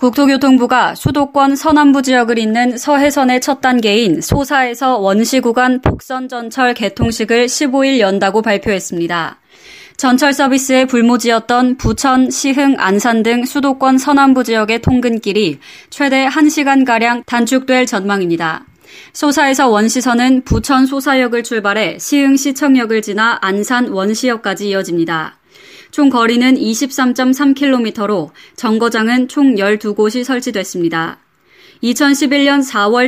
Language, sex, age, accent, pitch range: Korean, female, 20-39, native, 220-275 Hz